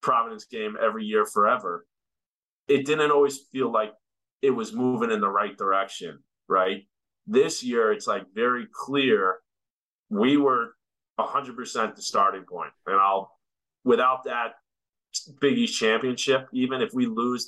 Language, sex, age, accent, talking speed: English, male, 30-49, American, 145 wpm